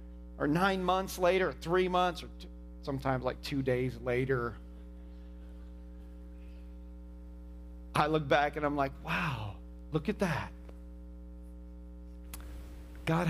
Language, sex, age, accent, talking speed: English, male, 40-59, American, 110 wpm